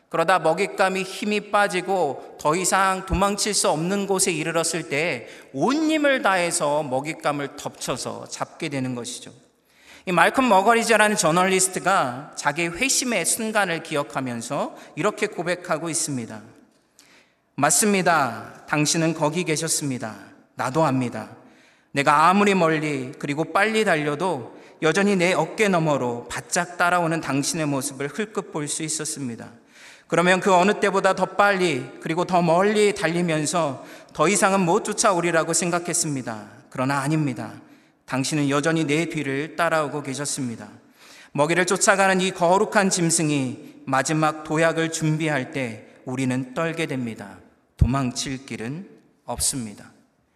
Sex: male